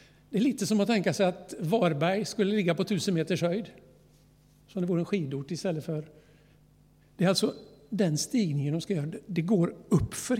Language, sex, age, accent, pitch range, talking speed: Swedish, male, 60-79, native, 155-195 Hz, 190 wpm